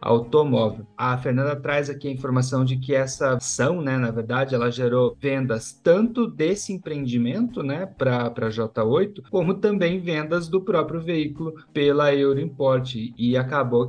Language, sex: Portuguese, male